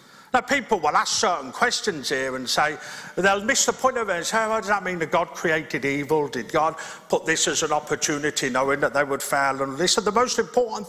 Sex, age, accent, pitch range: male, 50-69, British, 180-245 Hz